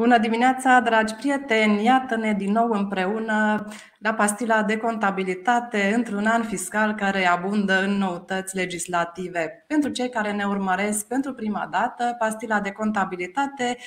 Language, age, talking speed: Romanian, 20-39, 135 wpm